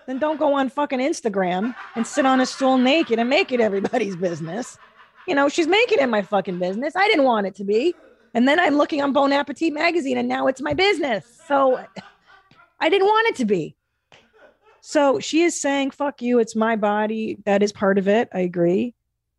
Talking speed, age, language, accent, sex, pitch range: 205 wpm, 30-49, English, American, female, 180-265 Hz